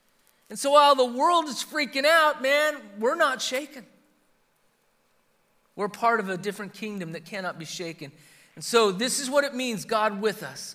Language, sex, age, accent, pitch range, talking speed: English, male, 40-59, American, 195-230 Hz, 180 wpm